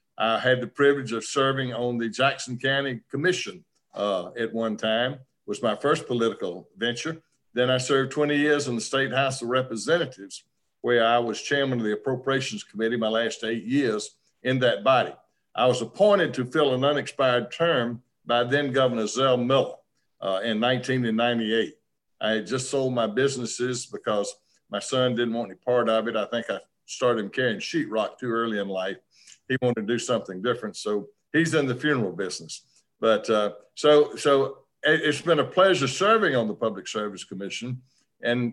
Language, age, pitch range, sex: English, 50-69, 115-140 Hz, male